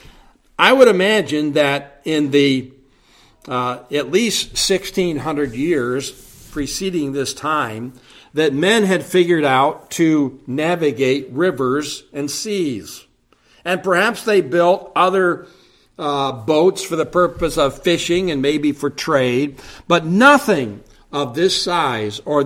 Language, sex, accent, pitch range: English, male, American, 135-180 Hz